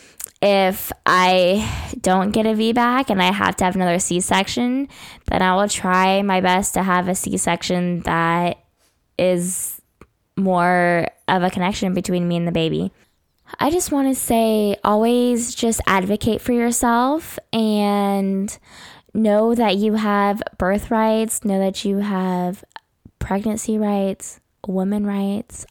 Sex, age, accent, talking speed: female, 10-29, American, 140 wpm